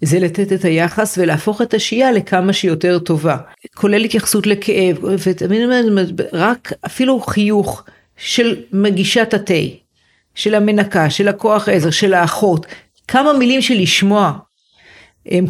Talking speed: 125 wpm